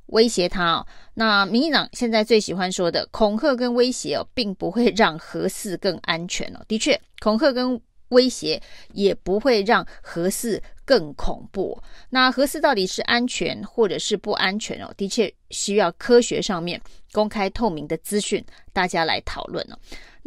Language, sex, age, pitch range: Chinese, female, 30-49, 190-235 Hz